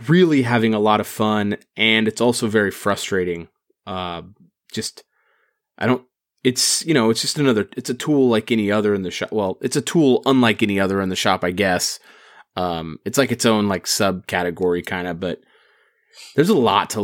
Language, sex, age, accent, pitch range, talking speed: English, male, 30-49, American, 95-115 Hz, 200 wpm